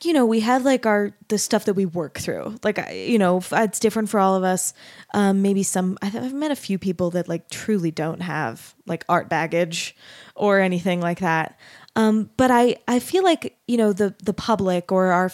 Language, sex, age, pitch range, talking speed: English, female, 20-39, 185-215 Hz, 210 wpm